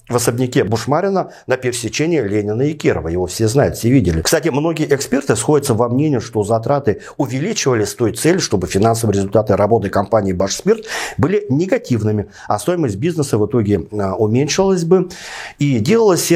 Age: 50-69